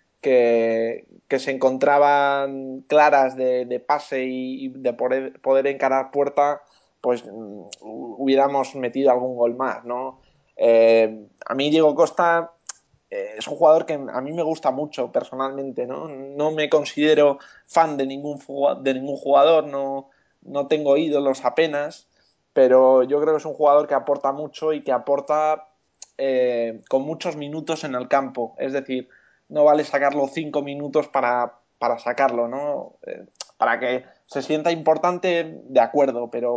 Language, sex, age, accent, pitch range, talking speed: Spanish, male, 20-39, Spanish, 130-150 Hz, 155 wpm